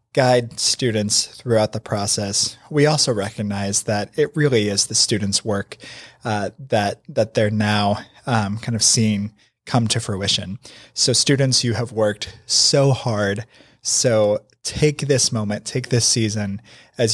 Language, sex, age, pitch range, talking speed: English, male, 20-39, 110-125 Hz, 145 wpm